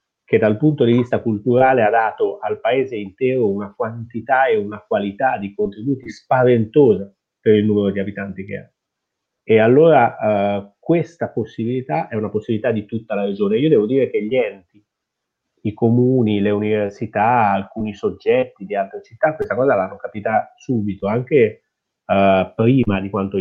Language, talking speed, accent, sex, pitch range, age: Italian, 160 wpm, native, male, 100-125 Hz, 30-49